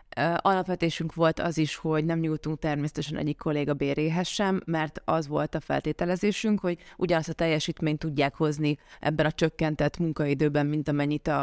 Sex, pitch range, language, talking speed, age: female, 150-170 Hz, Hungarian, 150 wpm, 20-39